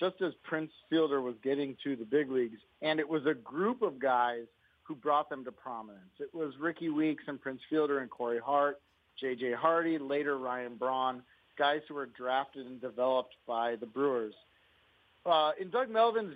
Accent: American